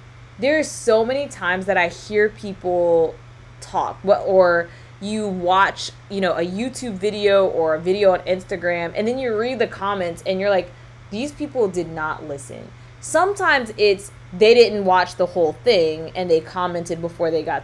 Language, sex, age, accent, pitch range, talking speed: English, female, 20-39, American, 155-205 Hz, 170 wpm